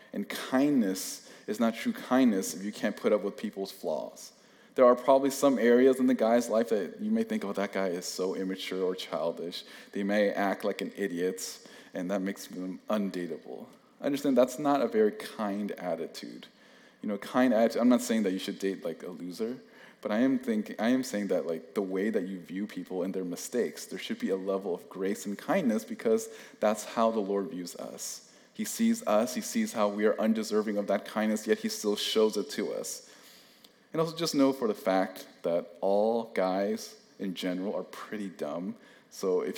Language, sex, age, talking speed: English, male, 20-39, 210 wpm